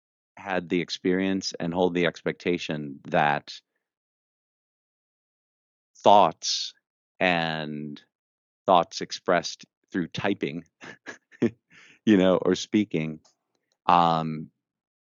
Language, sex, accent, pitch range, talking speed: English, male, American, 80-95 Hz, 75 wpm